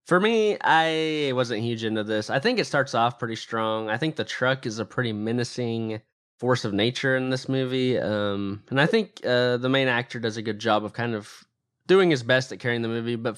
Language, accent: English, American